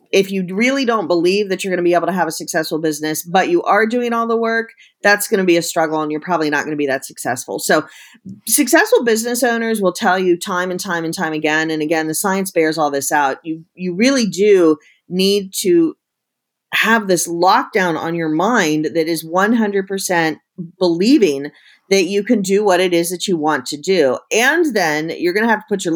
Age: 40-59